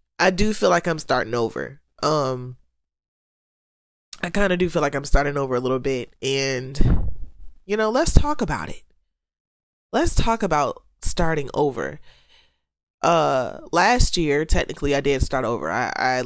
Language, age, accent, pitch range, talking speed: English, 20-39, American, 130-165 Hz, 155 wpm